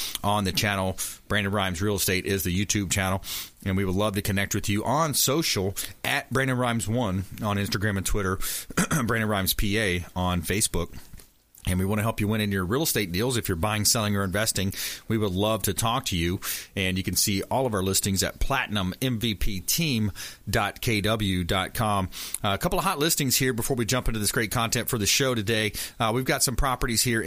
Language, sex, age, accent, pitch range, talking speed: English, male, 30-49, American, 100-130 Hz, 200 wpm